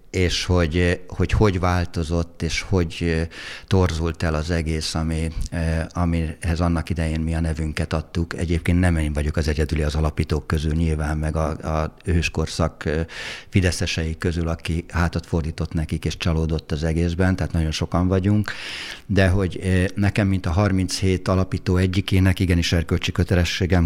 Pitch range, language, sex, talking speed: 80-90 Hz, Hungarian, male, 145 wpm